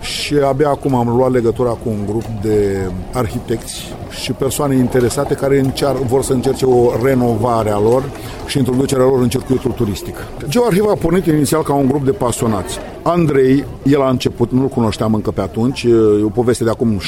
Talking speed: 185 wpm